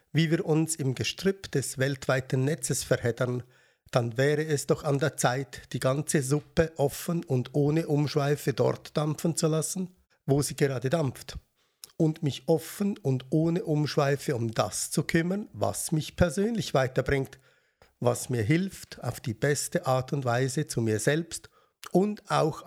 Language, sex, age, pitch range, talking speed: German, male, 50-69, 130-160 Hz, 155 wpm